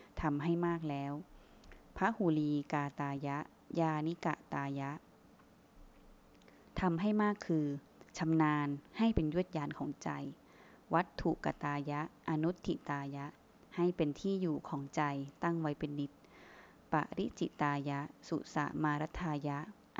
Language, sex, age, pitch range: Thai, female, 20-39, 145-170 Hz